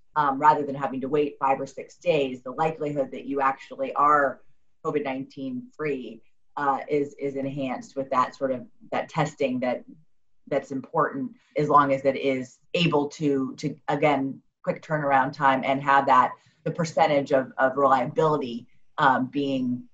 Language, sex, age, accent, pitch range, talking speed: English, female, 30-49, American, 135-150 Hz, 165 wpm